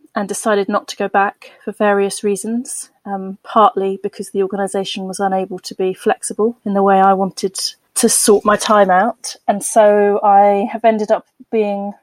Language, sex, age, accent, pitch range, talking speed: English, female, 30-49, British, 195-220 Hz, 180 wpm